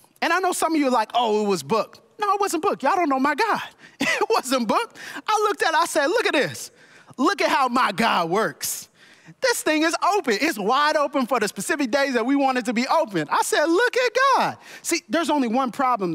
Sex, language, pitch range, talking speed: male, English, 235-315 Hz, 240 wpm